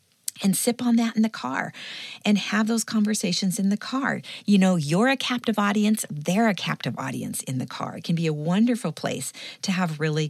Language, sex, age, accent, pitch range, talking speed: English, female, 40-59, American, 155-210 Hz, 210 wpm